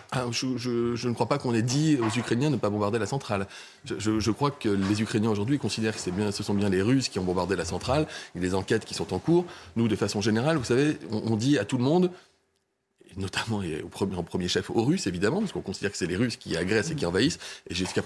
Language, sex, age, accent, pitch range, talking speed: French, male, 30-49, French, 95-120 Hz, 280 wpm